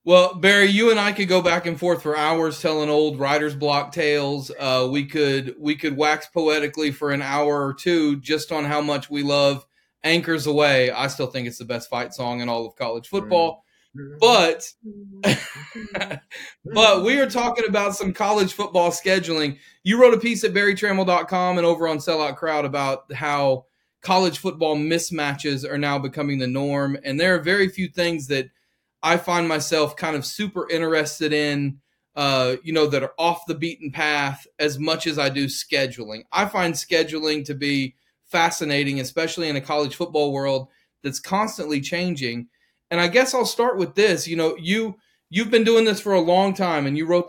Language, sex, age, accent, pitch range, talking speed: English, male, 30-49, American, 145-175 Hz, 185 wpm